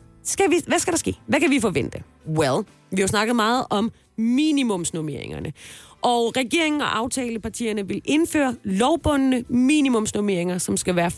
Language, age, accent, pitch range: Danish, 30-49, native, 190-255 Hz